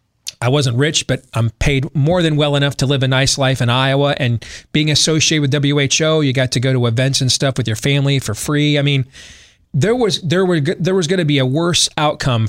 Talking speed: 235 wpm